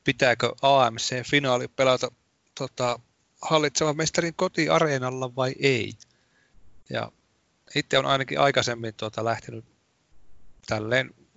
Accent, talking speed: native, 90 wpm